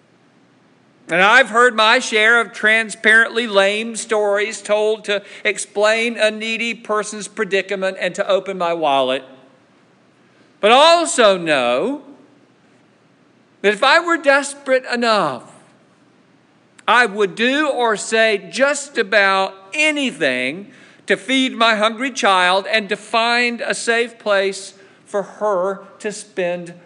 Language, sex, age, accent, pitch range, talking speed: English, male, 50-69, American, 200-250 Hz, 120 wpm